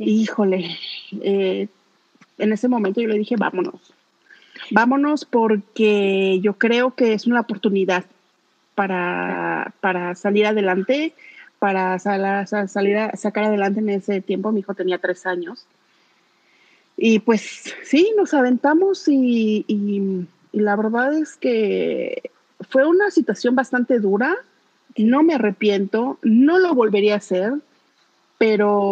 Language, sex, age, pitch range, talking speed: Spanish, female, 40-59, 195-245 Hz, 120 wpm